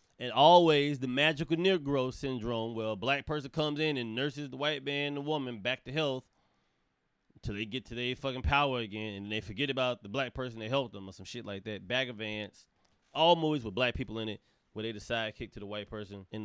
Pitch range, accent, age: 110-150 Hz, American, 30-49